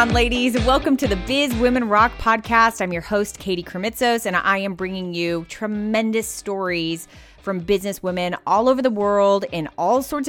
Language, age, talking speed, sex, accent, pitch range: English, 20-39, 175 wpm, female, American, 180-250 Hz